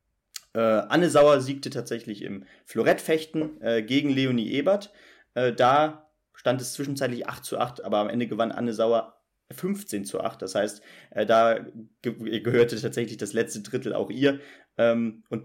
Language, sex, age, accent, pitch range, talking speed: German, male, 30-49, German, 110-135 Hz, 165 wpm